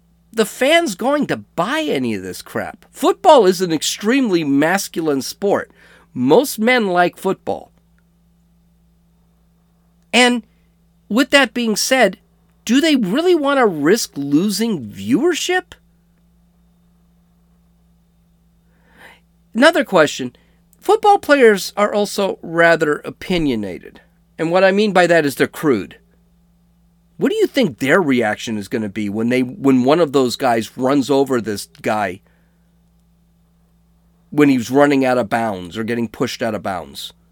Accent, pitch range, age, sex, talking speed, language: American, 145-205 Hz, 40-59, male, 130 wpm, English